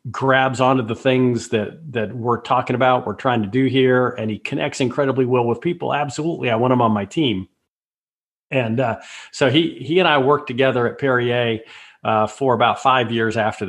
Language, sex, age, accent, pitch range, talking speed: English, male, 50-69, American, 110-130 Hz, 195 wpm